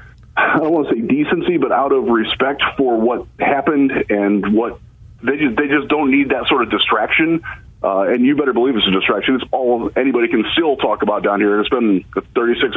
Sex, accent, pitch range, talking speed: male, American, 105-155 Hz, 210 wpm